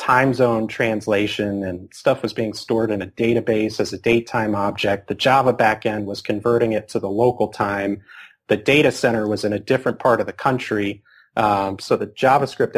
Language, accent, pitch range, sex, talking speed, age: English, American, 105-125 Hz, male, 190 wpm, 30-49